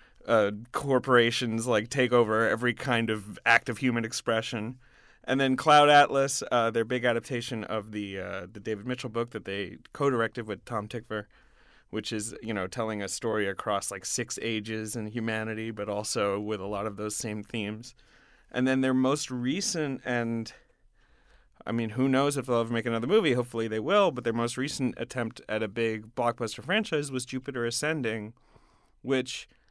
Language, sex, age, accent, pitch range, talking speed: English, male, 30-49, American, 110-135 Hz, 180 wpm